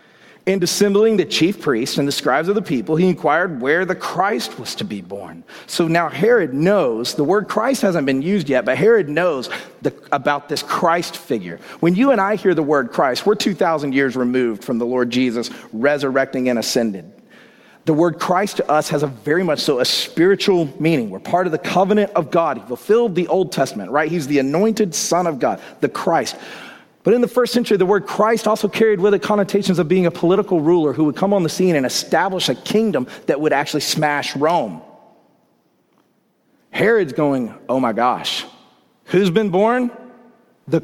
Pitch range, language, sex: 145-205 Hz, English, male